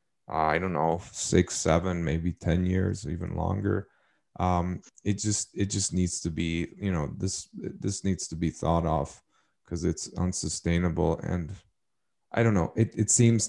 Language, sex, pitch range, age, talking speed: English, male, 85-100 Hz, 30-49, 165 wpm